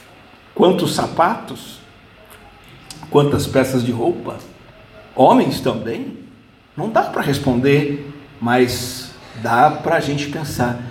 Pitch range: 125-195 Hz